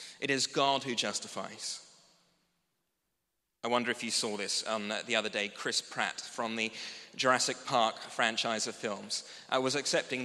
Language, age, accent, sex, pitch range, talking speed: English, 30-49, British, male, 130-160 Hz, 150 wpm